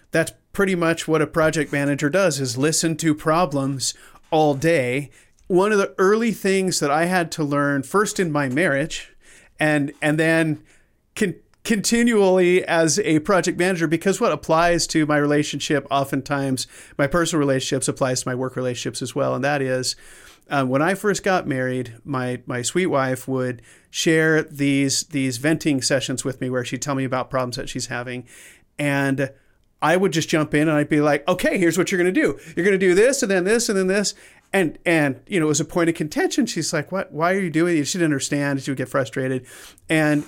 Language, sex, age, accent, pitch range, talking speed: English, male, 40-59, American, 135-170 Hz, 200 wpm